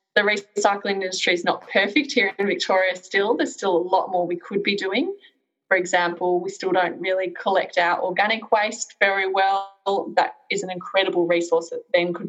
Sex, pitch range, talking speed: female, 175-240 Hz, 190 wpm